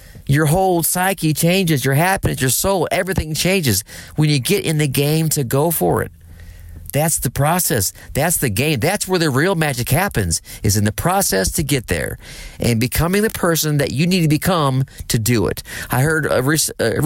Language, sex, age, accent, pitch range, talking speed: English, male, 40-59, American, 100-155 Hz, 190 wpm